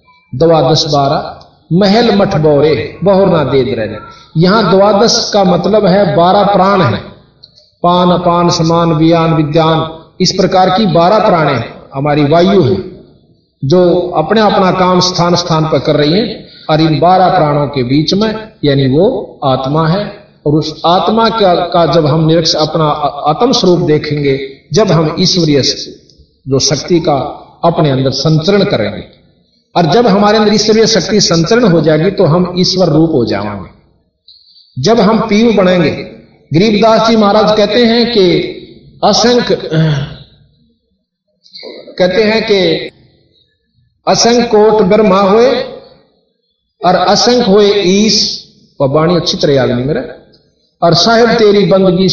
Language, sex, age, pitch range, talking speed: Hindi, male, 50-69, 150-205 Hz, 135 wpm